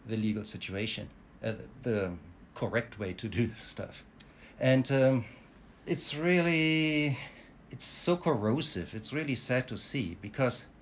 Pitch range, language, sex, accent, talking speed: 120-150 Hz, English, male, German, 135 wpm